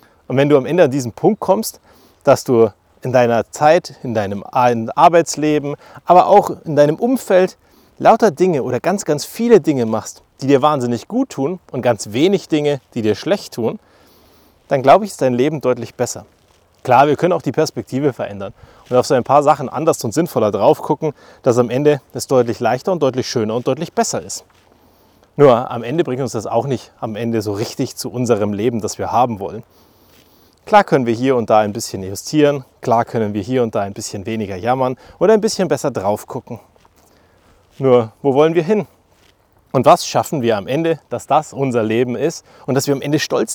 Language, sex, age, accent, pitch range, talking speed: German, male, 30-49, German, 110-155 Hz, 205 wpm